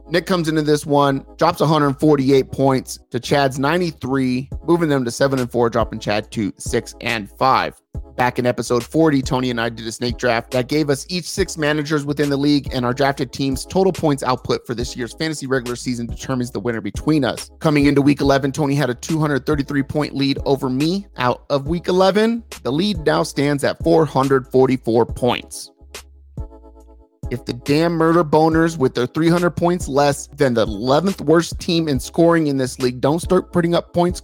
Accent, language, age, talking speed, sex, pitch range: American, English, 30-49, 190 wpm, male, 125-160 Hz